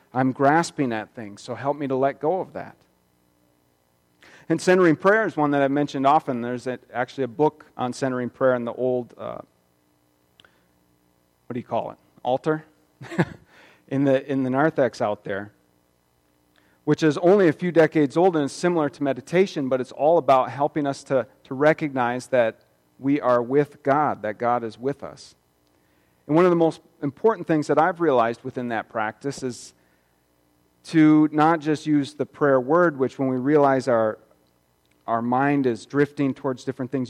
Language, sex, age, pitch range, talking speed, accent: English, male, 40-59, 110-140 Hz, 180 wpm, American